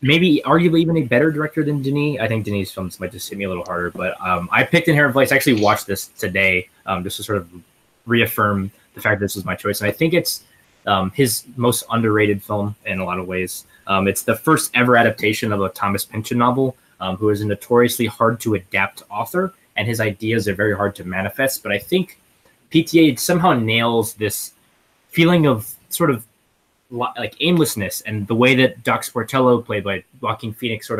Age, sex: 20-39, male